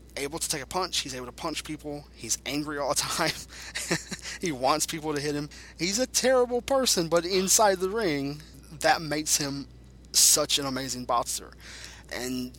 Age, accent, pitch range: 20-39, American, 110-150 Hz